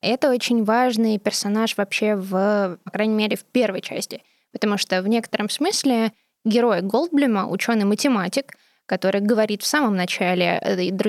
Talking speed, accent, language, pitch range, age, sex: 135 wpm, native, Russian, 195-235 Hz, 20-39, female